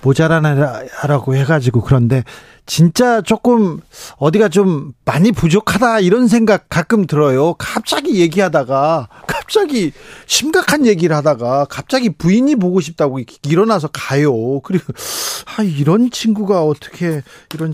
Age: 40-59